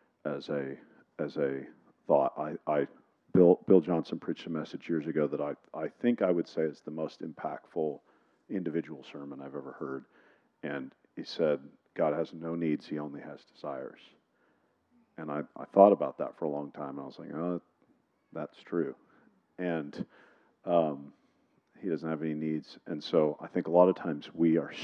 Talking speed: 185 wpm